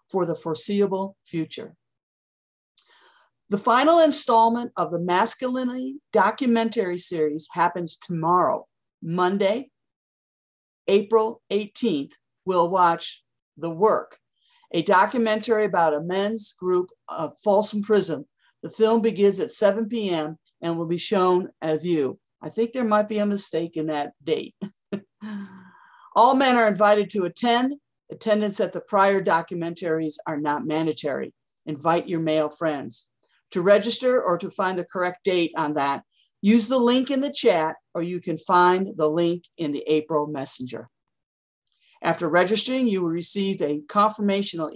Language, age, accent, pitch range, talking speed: English, 50-69, American, 165-220 Hz, 140 wpm